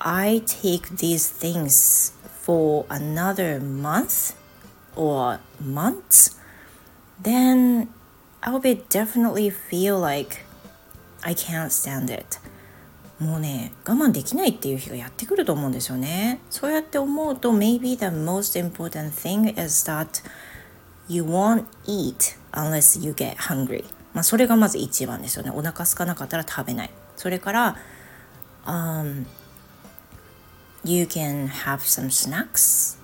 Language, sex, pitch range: Japanese, female, 135-195 Hz